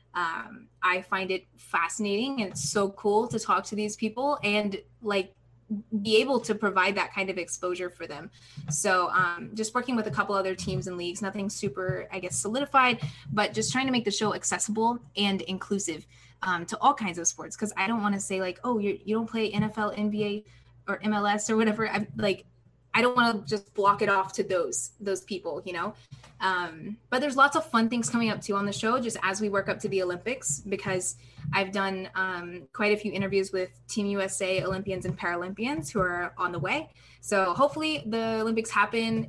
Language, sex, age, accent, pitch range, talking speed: English, female, 10-29, American, 185-220 Hz, 205 wpm